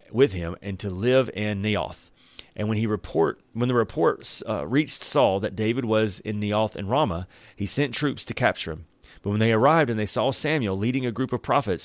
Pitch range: 100-135 Hz